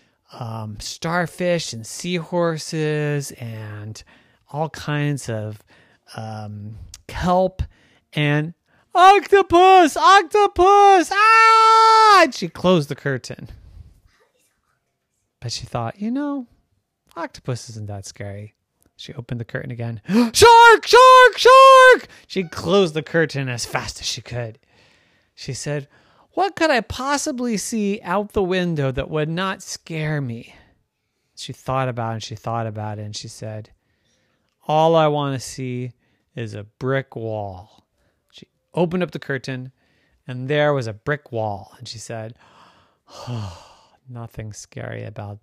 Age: 30-49